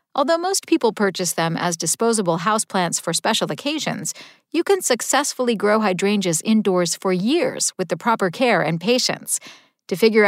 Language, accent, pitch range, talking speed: English, American, 190-270 Hz, 160 wpm